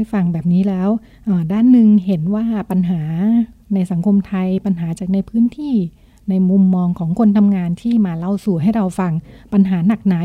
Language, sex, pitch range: Thai, female, 175-210 Hz